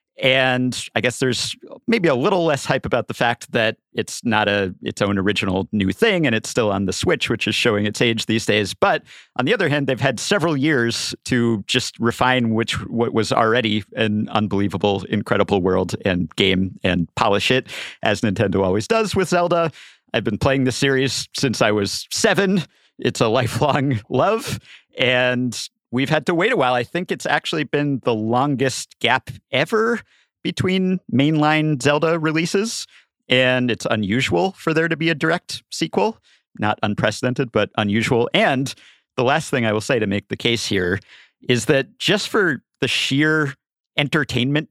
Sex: male